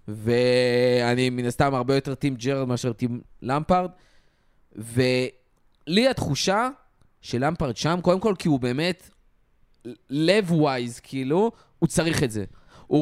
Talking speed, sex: 125 wpm, male